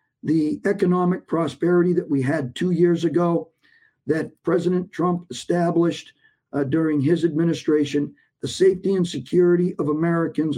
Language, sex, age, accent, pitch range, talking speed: English, male, 50-69, American, 155-185 Hz, 130 wpm